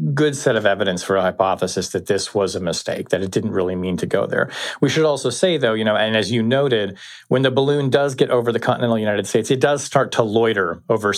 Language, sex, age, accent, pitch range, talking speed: English, male, 40-59, American, 105-135 Hz, 250 wpm